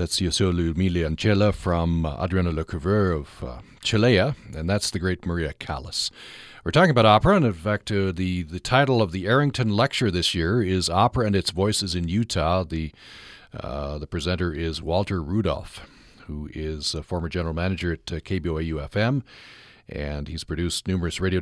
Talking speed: 175 wpm